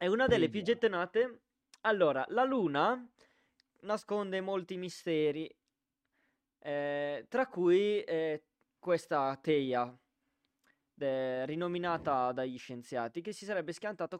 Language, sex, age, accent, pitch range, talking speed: Italian, male, 20-39, native, 150-205 Hz, 105 wpm